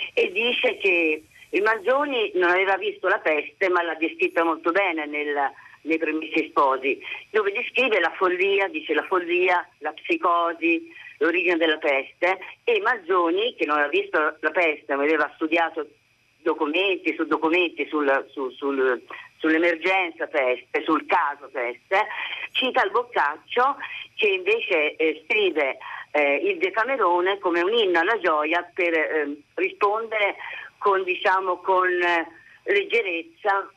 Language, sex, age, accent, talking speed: Italian, female, 50-69, native, 135 wpm